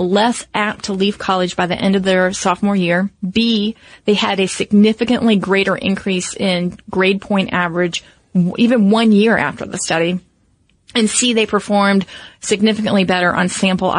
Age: 30-49